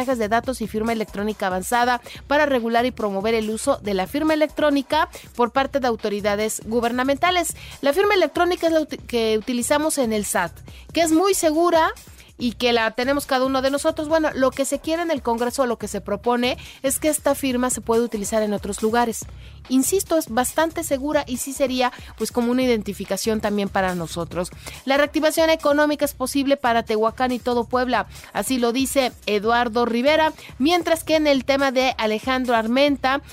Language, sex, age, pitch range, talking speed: Spanish, female, 40-59, 225-290 Hz, 185 wpm